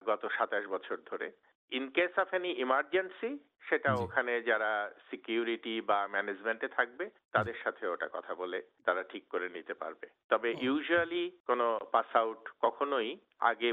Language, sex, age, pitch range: Bengali, male, 50-69, 115-160 Hz